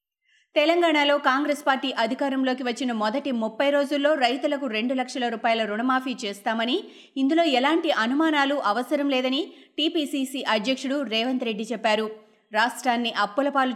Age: 20-39